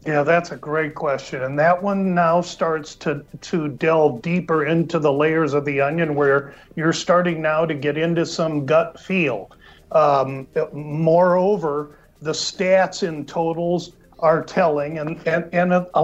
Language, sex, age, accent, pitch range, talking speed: English, male, 50-69, American, 150-180 Hz, 155 wpm